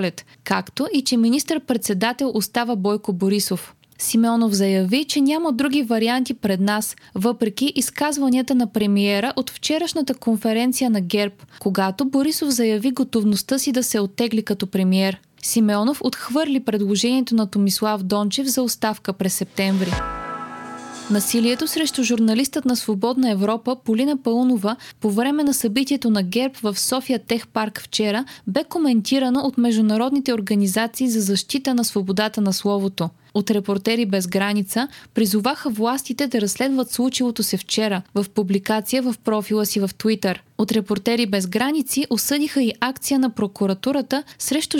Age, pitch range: 20-39, 205-260 Hz